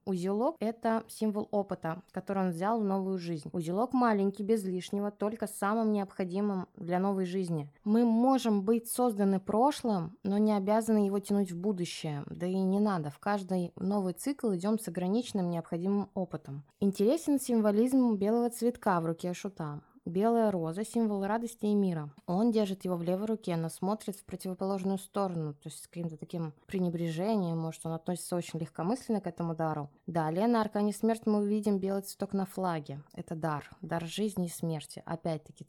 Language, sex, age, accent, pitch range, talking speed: Russian, female, 20-39, native, 170-215 Hz, 170 wpm